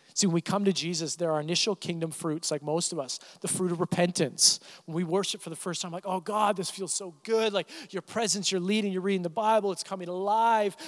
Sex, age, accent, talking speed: male, 40-59, American, 250 wpm